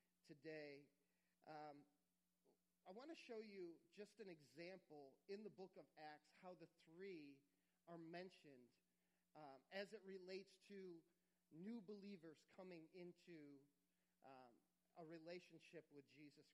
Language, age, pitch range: English, 40-59, 160-215 Hz